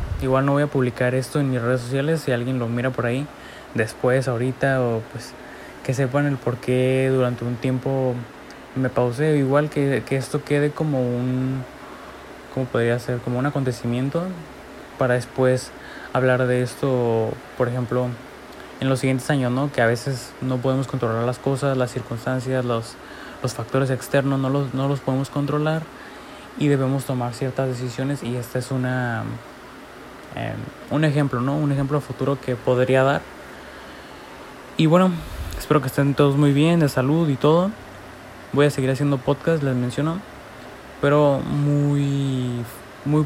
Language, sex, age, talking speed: Spanish, male, 20-39, 160 wpm